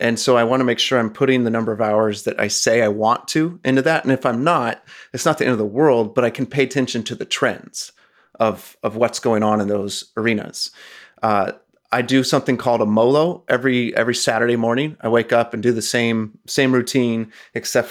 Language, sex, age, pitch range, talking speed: English, male, 30-49, 110-125 Hz, 230 wpm